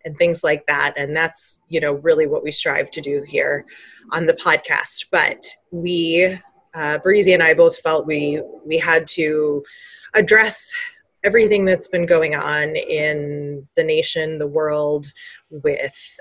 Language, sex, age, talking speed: English, female, 20-39, 155 wpm